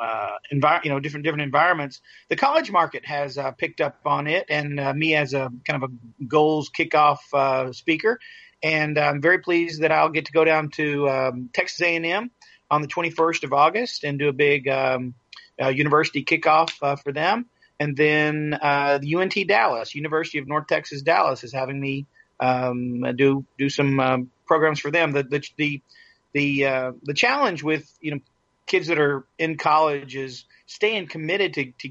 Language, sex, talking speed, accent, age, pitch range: English, male, 190 wpm, American, 40-59, 130-155 Hz